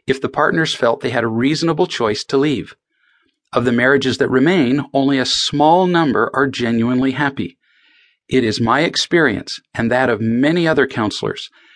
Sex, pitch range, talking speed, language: male, 125-160 Hz, 170 wpm, English